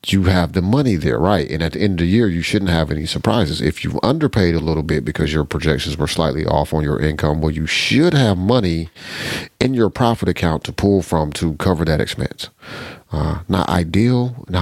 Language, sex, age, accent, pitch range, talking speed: English, male, 40-59, American, 75-95 Hz, 220 wpm